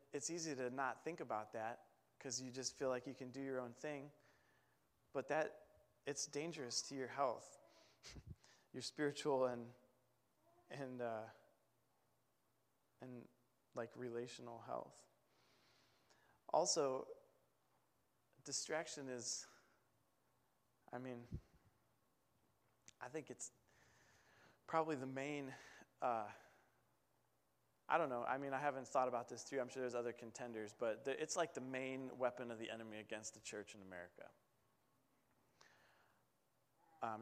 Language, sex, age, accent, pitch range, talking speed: English, male, 20-39, American, 120-140 Hz, 125 wpm